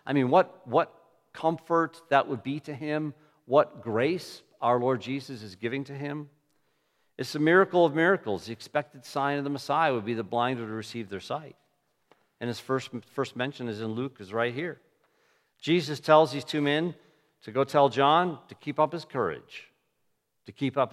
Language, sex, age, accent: English, male, 50-69, American